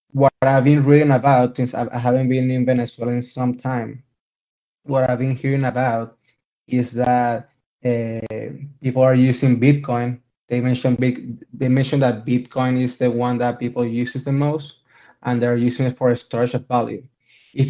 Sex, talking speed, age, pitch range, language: male, 175 wpm, 20-39, 120-135 Hz, English